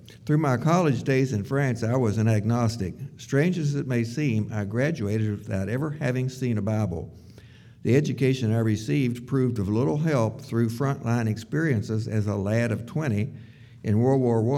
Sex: male